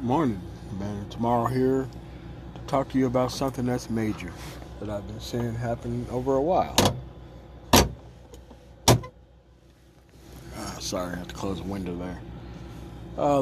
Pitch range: 100-165 Hz